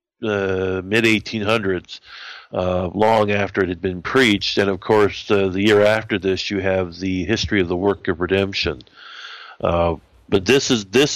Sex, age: male, 50-69